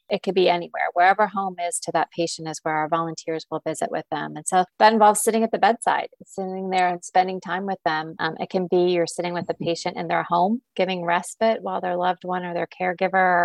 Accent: American